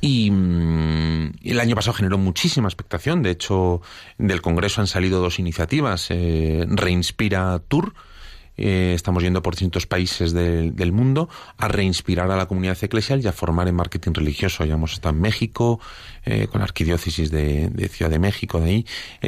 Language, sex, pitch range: Spanish, male, 85-110 Hz